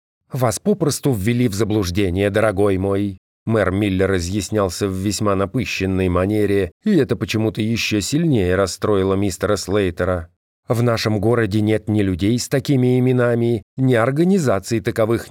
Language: Russian